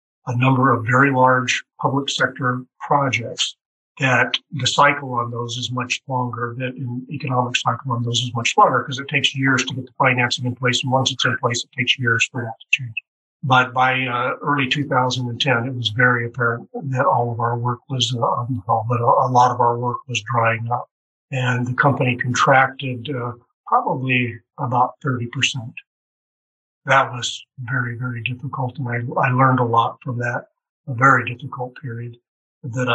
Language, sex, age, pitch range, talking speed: English, male, 50-69, 120-135 Hz, 180 wpm